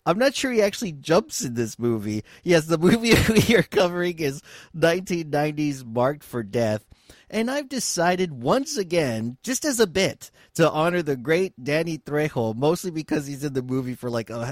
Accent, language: American, English